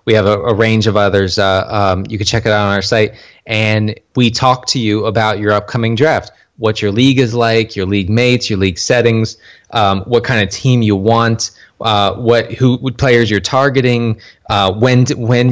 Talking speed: 210 wpm